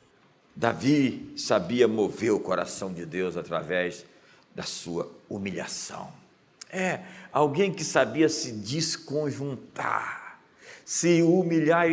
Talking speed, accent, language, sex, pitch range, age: 95 wpm, Brazilian, Portuguese, male, 145-195 Hz, 60-79